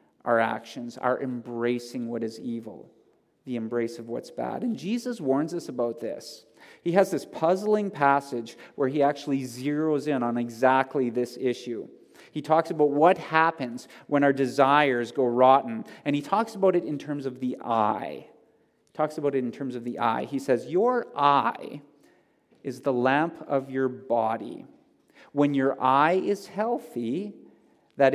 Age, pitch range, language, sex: 40-59, 125-170 Hz, English, male